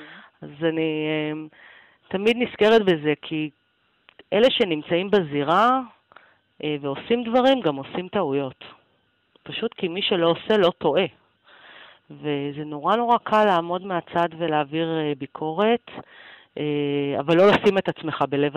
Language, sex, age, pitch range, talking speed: Hebrew, female, 40-59, 150-205 Hz, 115 wpm